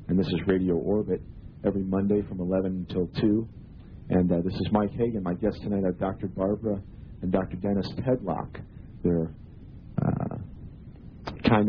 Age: 40-59